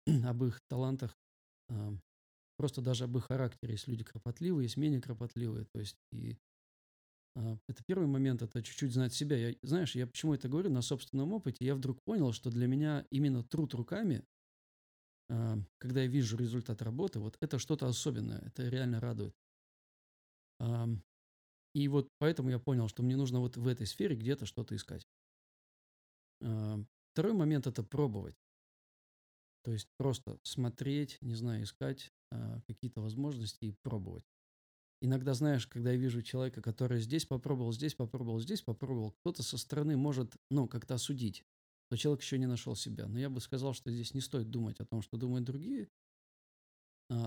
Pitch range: 110-135 Hz